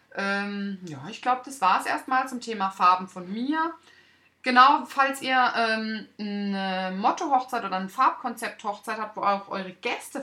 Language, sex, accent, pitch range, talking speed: German, female, German, 170-235 Hz, 155 wpm